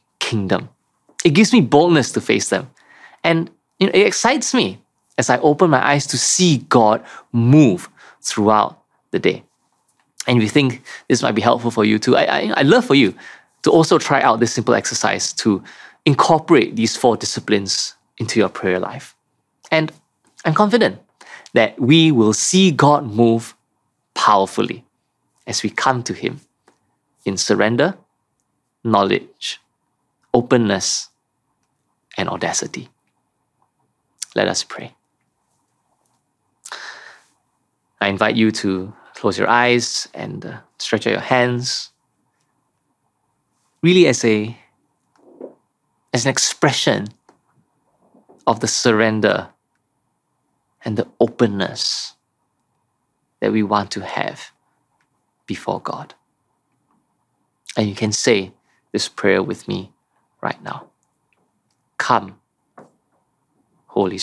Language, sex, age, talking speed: English, male, 20-39, 120 wpm